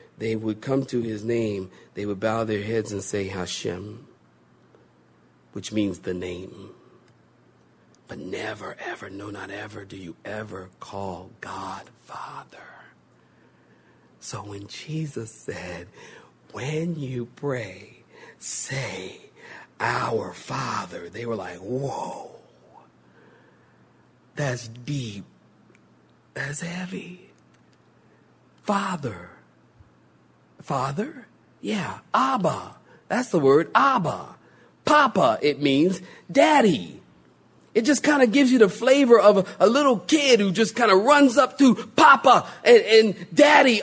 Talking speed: 115 wpm